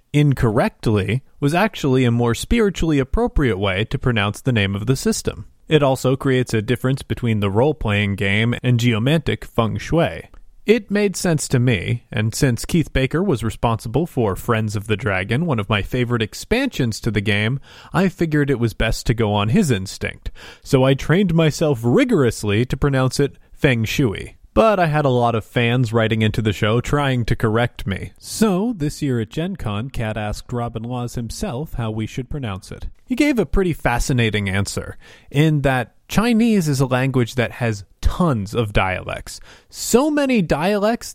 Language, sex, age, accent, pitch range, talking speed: English, male, 30-49, American, 110-150 Hz, 180 wpm